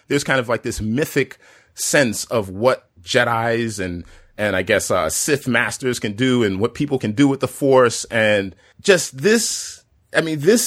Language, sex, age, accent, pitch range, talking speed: English, male, 30-49, American, 110-150 Hz, 185 wpm